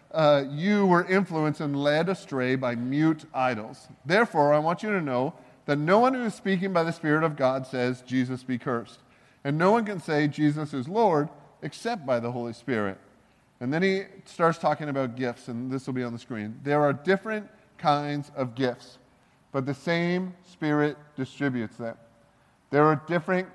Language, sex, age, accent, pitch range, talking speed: English, male, 40-59, American, 130-160 Hz, 185 wpm